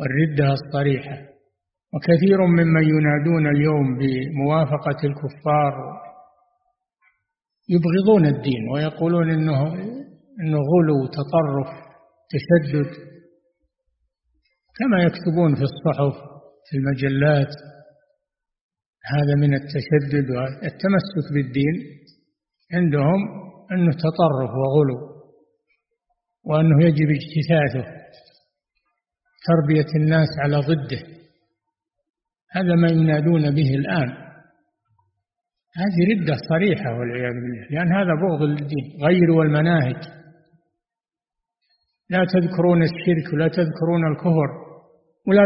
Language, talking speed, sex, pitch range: Arabic, 80 wpm, male, 145-180 Hz